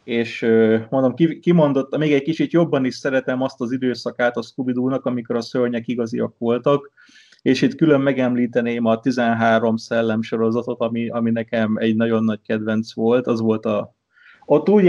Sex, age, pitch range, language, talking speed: male, 30-49, 115-130 Hz, Hungarian, 160 wpm